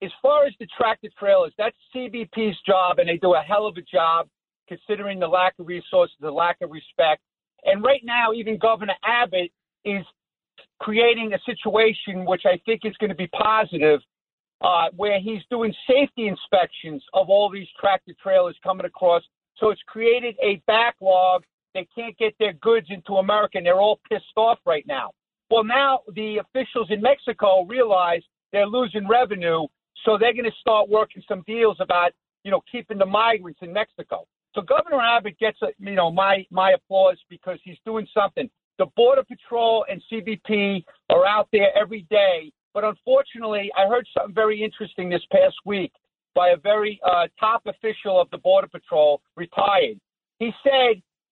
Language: English